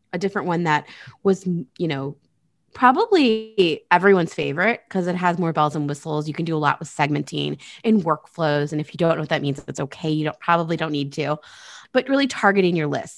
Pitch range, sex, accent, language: 155-200 Hz, female, American, English